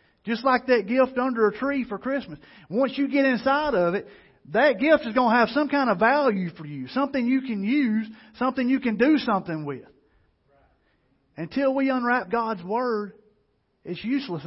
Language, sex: English, male